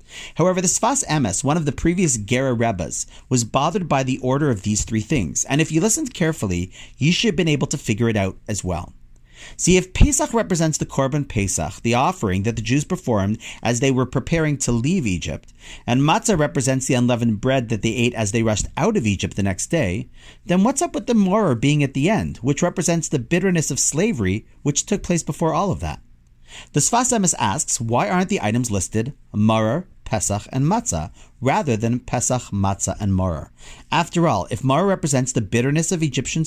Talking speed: 205 wpm